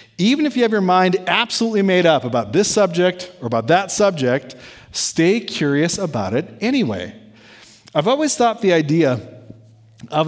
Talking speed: 160 wpm